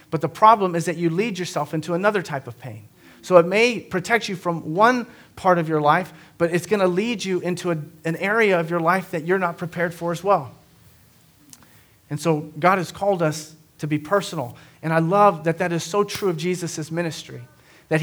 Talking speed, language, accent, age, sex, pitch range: 215 wpm, English, American, 40-59, male, 155-185 Hz